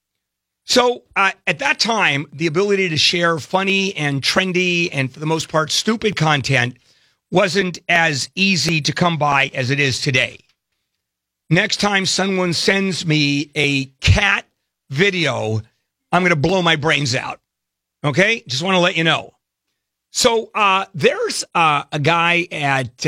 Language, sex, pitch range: English, male, 140-195 Hz